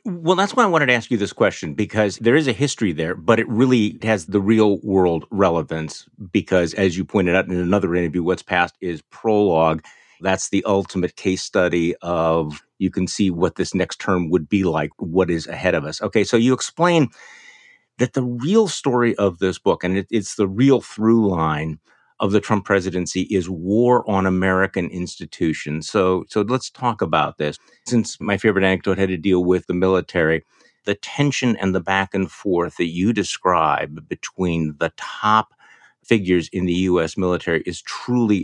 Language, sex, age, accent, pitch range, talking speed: English, male, 50-69, American, 90-115 Hz, 185 wpm